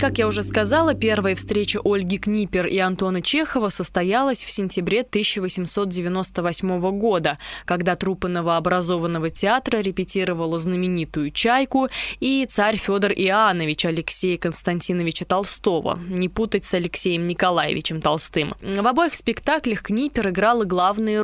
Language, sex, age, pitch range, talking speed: Russian, female, 20-39, 175-220 Hz, 120 wpm